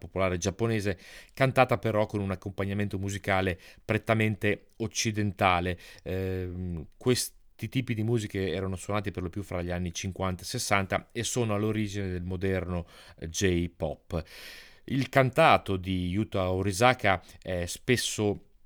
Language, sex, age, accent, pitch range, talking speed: Italian, male, 30-49, native, 90-110 Hz, 125 wpm